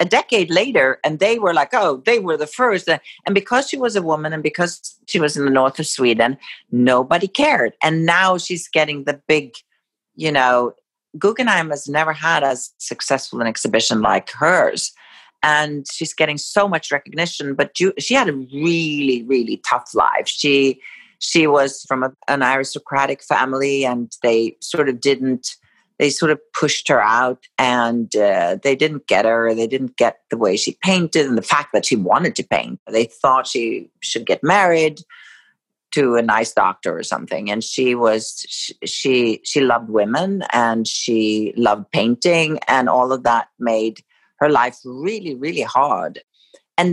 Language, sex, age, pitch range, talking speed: English, female, 50-69, 125-165 Hz, 170 wpm